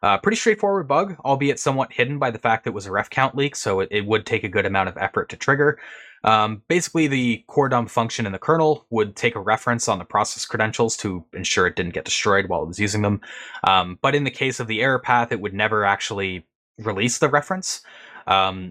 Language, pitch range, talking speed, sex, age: English, 100-135 Hz, 235 wpm, male, 20-39